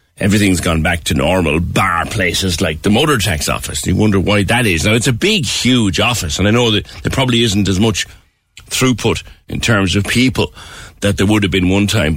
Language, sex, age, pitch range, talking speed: English, male, 60-79, 90-110 Hz, 215 wpm